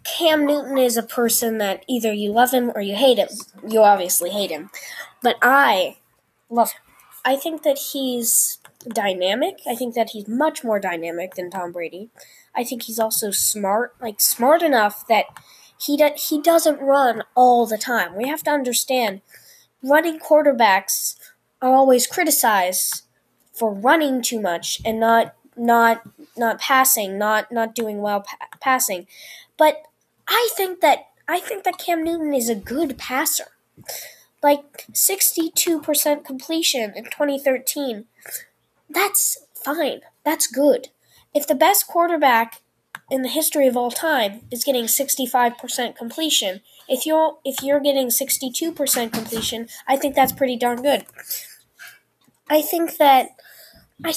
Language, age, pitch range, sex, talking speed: English, 10-29, 225-295 Hz, female, 145 wpm